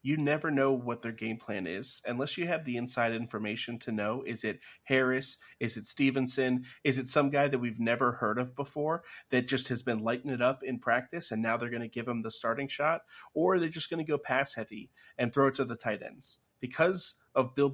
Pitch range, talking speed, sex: 120-145 Hz, 235 wpm, male